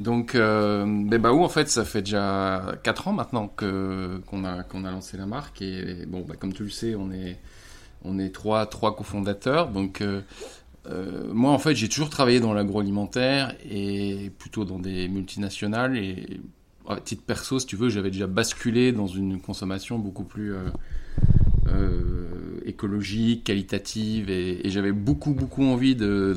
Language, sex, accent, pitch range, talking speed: French, male, French, 95-115 Hz, 165 wpm